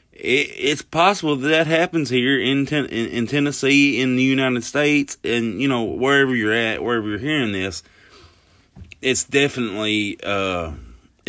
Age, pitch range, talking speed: 30-49, 95-110 Hz, 145 wpm